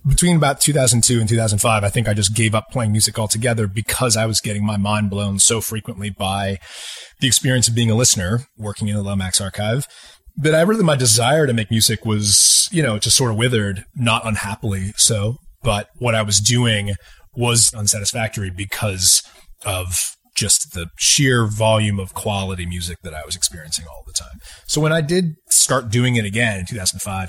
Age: 30-49